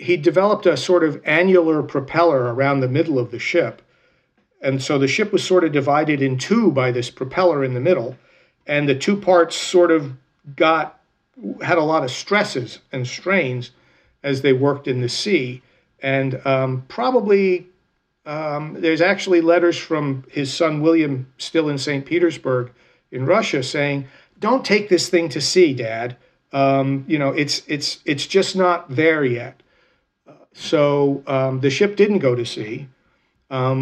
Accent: American